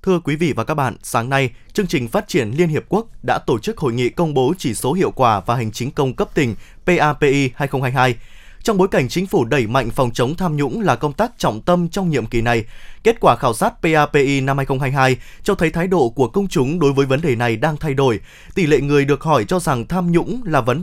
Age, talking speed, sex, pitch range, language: 20-39, 250 wpm, male, 135-180 Hz, Vietnamese